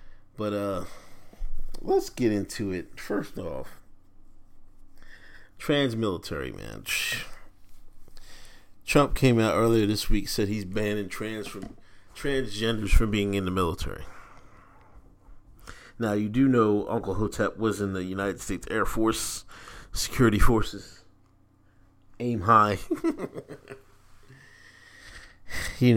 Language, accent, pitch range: English, American, 95-110 Hz